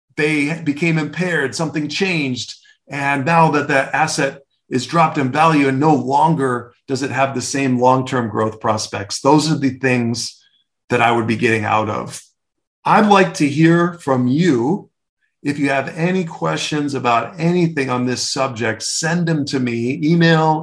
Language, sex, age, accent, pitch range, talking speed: English, male, 40-59, American, 120-160 Hz, 165 wpm